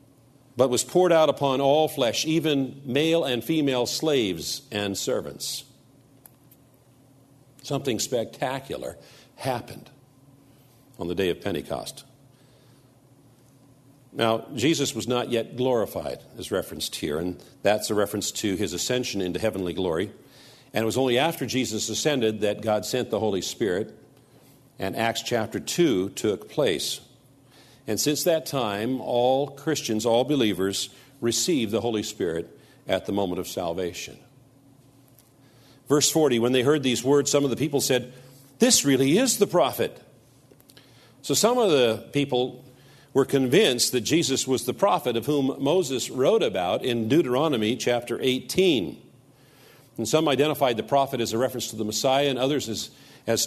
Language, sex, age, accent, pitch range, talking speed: English, male, 60-79, American, 115-140 Hz, 145 wpm